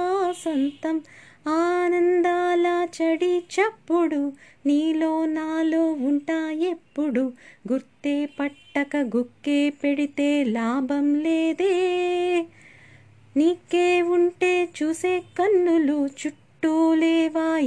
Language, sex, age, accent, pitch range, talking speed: Telugu, female, 20-39, native, 270-335 Hz, 65 wpm